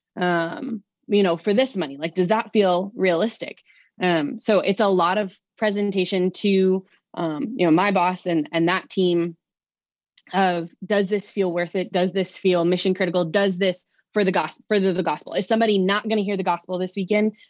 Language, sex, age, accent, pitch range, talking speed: English, female, 20-39, American, 180-220 Hz, 200 wpm